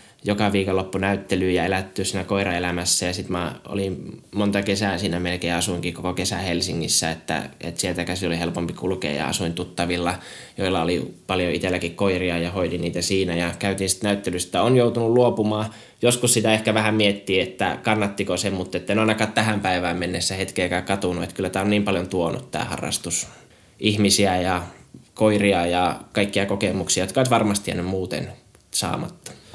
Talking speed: 170 wpm